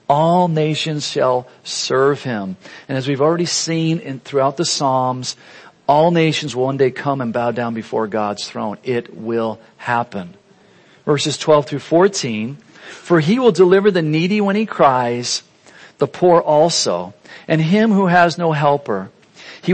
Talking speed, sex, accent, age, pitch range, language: 160 wpm, male, American, 50-69, 120-165 Hz, English